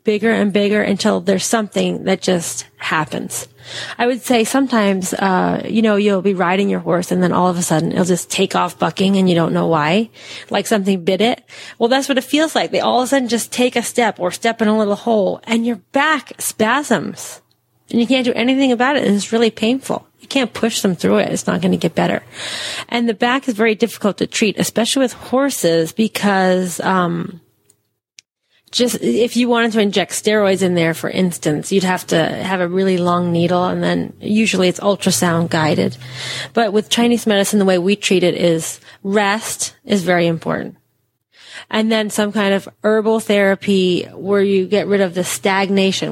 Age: 30-49